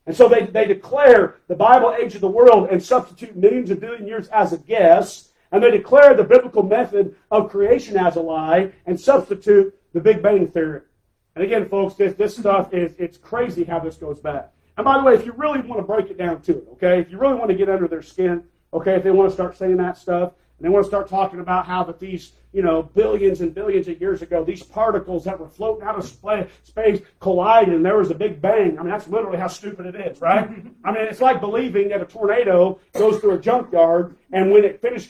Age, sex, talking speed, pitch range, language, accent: 40-59, male, 240 wpm, 180-230 Hz, English, American